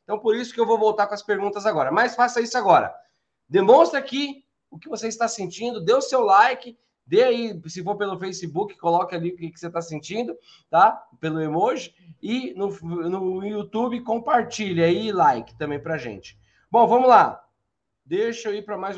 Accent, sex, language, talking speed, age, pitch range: Brazilian, male, Portuguese, 190 wpm, 20-39, 170-230 Hz